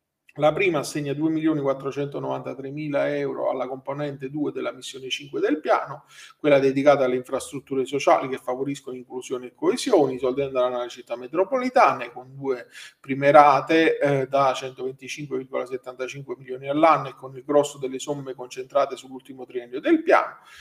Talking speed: 135 wpm